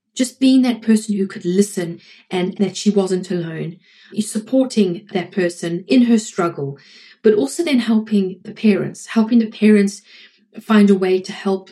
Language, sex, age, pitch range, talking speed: English, female, 30-49, 185-215 Hz, 170 wpm